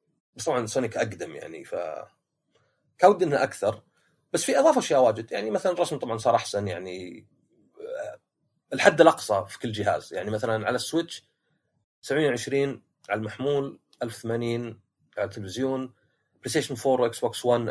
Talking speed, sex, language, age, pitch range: 140 wpm, male, Arabic, 30-49, 105-140 Hz